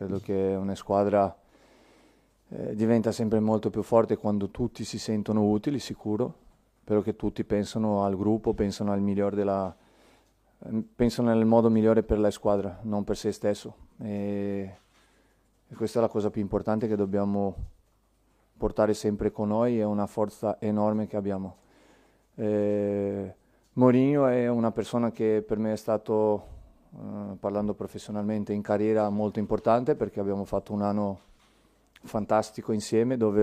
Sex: male